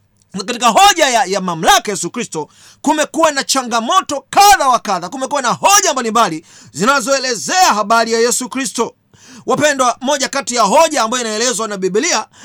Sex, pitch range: male, 220-280 Hz